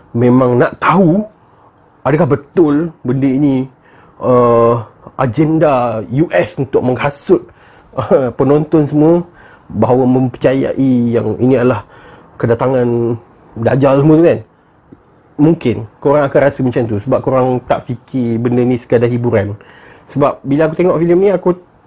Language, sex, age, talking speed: Malay, male, 30-49, 125 wpm